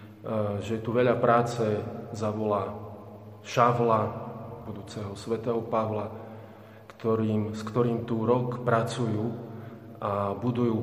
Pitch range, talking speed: 110-120 Hz, 95 wpm